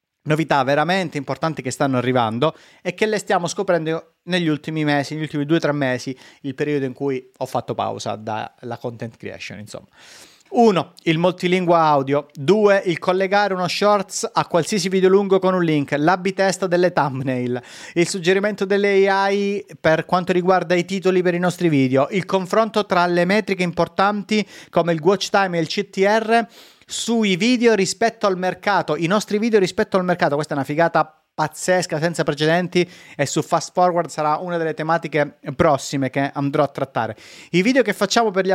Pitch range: 155-195 Hz